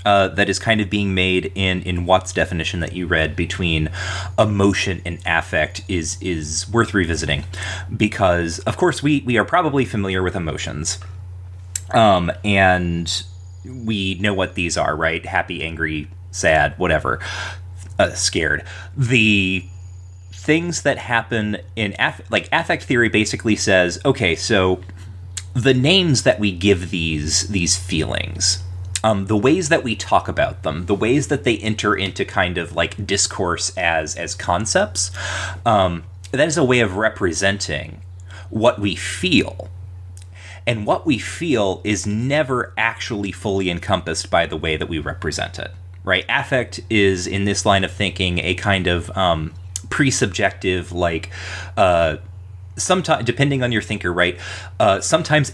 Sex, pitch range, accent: male, 90-105 Hz, American